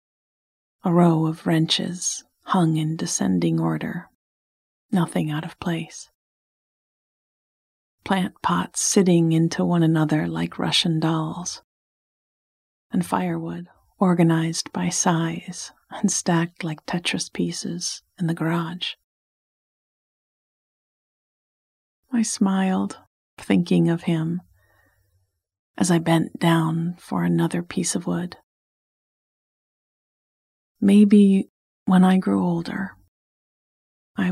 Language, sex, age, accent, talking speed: English, female, 40-59, American, 95 wpm